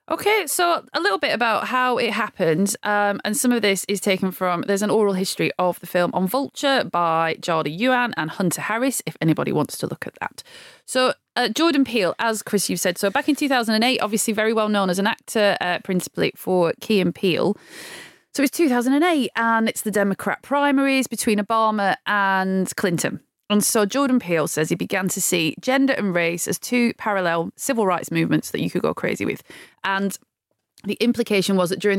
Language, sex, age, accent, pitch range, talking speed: English, female, 30-49, British, 180-230 Hz, 200 wpm